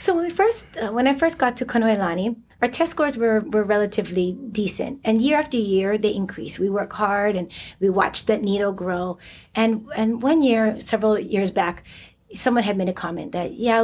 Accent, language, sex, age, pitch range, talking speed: American, English, female, 30-49, 190-230 Hz, 205 wpm